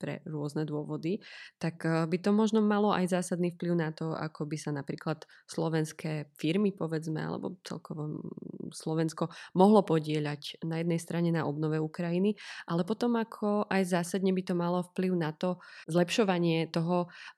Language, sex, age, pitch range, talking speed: Slovak, female, 20-39, 155-180 Hz, 150 wpm